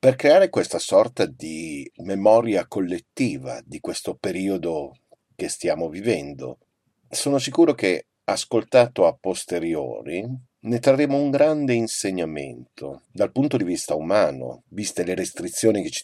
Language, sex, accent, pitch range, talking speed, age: Italian, male, native, 90-130 Hz, 125 wpm, 50-69